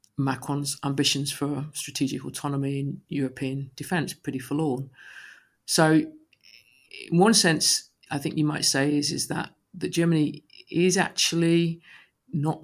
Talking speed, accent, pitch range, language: 130 wpm, British, 140-155 Hz, English